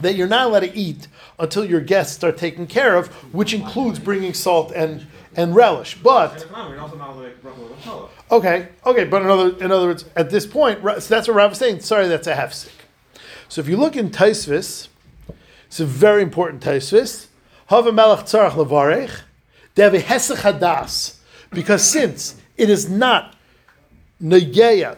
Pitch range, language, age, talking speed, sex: 165-220 Hz, English, 50-69, 140 wpm, male